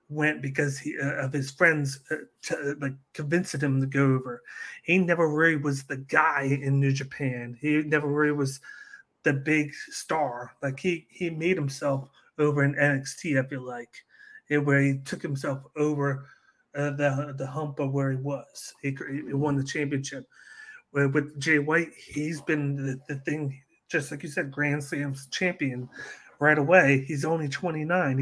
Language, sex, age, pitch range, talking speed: English, male, 30-49, 140-155 Hz, 170 wpm